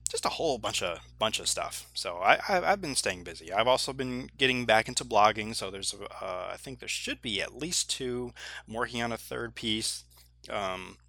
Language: English